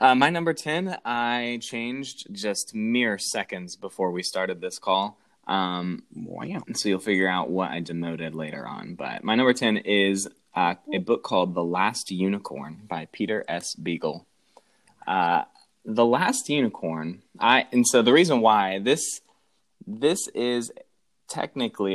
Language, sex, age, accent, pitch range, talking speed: English, male, 20-39, American, 95-115 Hz, 150 wpm